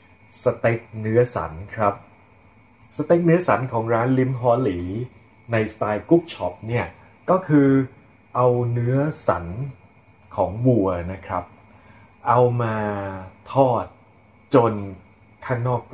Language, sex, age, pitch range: Thai, male, 30-49, 105-125 Hz